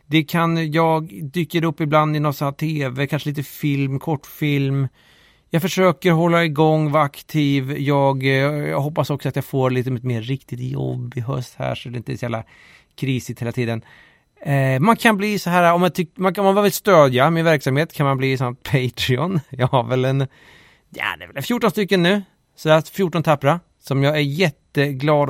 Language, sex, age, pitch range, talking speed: Swedish, male, 30-49, 130-180 Hz, 195 wpm